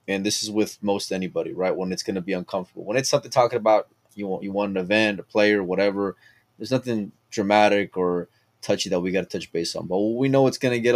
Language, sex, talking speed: English, male, 245 wpm